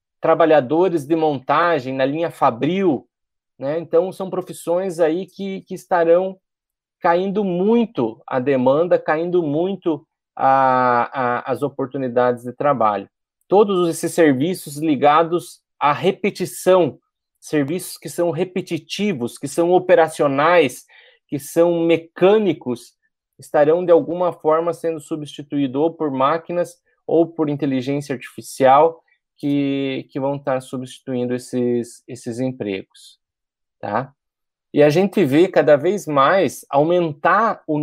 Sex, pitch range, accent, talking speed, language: male, 130-175 Hz, Brazilian, 115 wpm, Portuguese